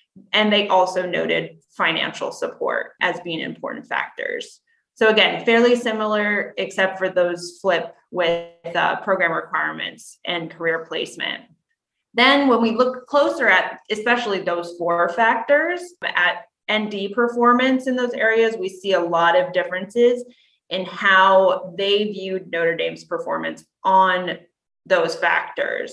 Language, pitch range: English, 175-230 Hz